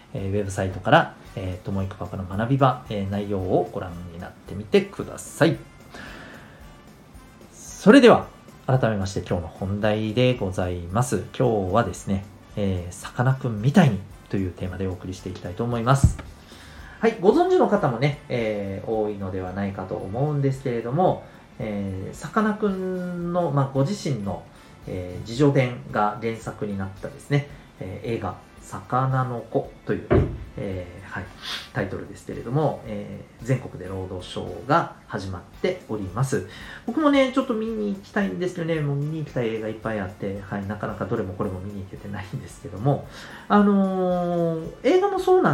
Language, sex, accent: Japanese, male, native